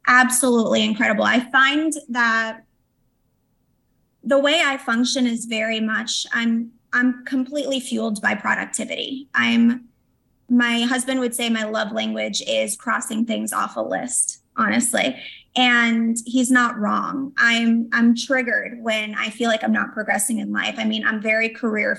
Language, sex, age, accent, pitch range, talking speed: English, female, 20-39, American, 225-255 Hz, 145 wpm